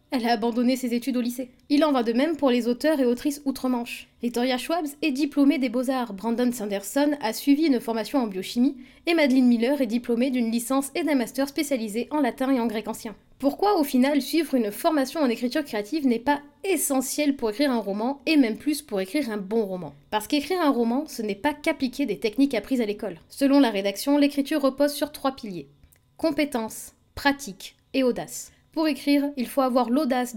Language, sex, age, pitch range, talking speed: French, female, 20-39, 230-280 Hz, 205 wpm